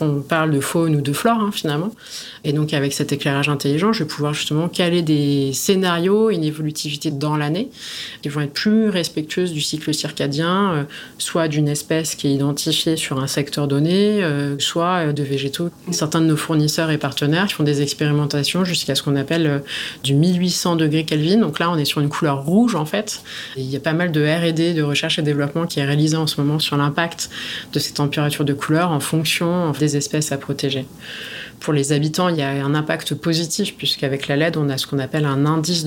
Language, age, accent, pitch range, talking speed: French, 20-39, French, 145-165 Hz, 210 wpm